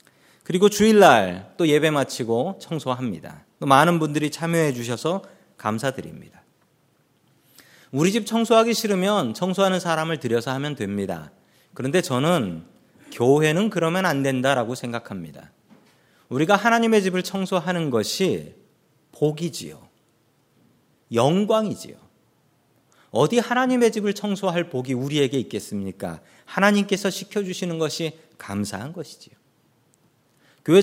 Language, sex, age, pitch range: Korean, male, 40-59, 130-195 Hz